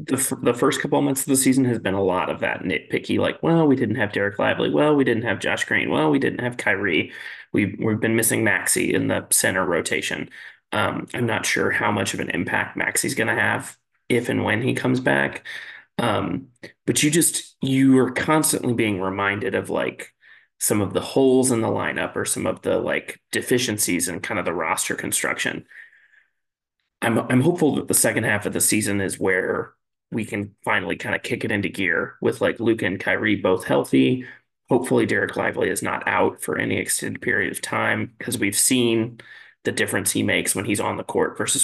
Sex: male